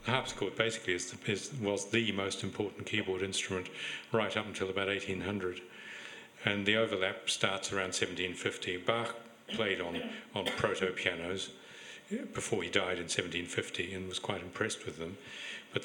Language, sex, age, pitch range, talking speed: English, male, 60-79, 95-105 Hz, 150 wpm